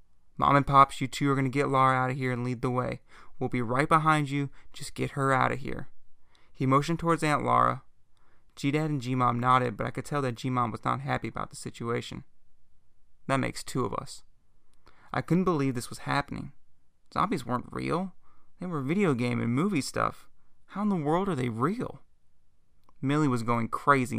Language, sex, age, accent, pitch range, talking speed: English, male, 30-49, American, 115-145 Hz, 200 wpm